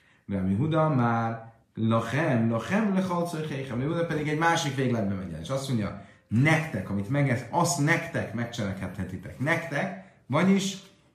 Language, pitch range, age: Hungarian, 105-140 Hz, 30-49